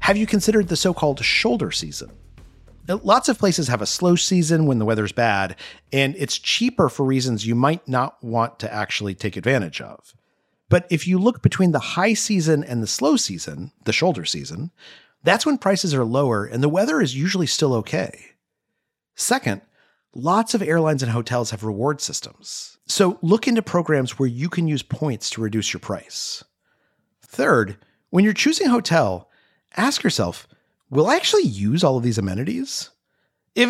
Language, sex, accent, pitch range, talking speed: English, male, American, 115-185 Hz, 175 wpm